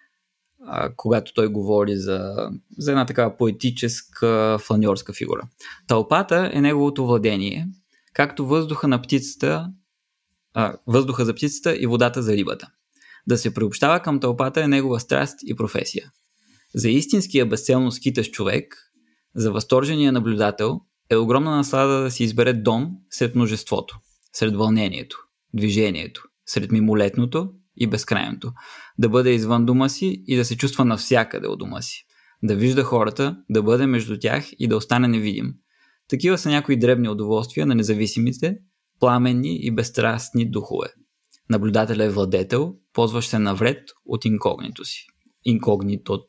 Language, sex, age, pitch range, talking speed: Bulgarian, male, 20-39, 110-135 Hz, 135 wpm